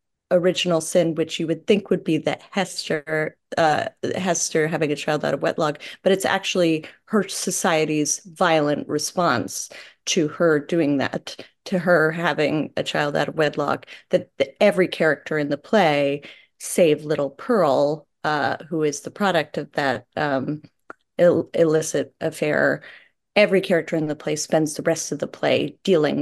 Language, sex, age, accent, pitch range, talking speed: English, female, 30-49, American, 155-195 Hz, 160 wpm